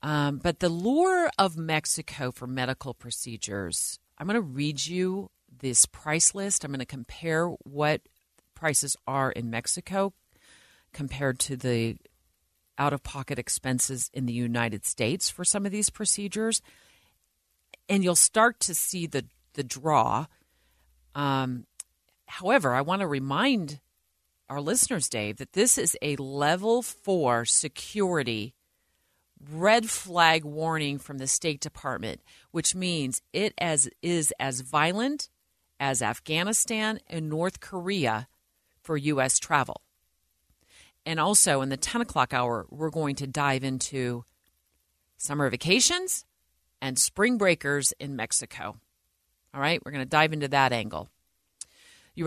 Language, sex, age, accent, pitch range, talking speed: English, female, 40-59, American, 120-175 Hz, 130 wpm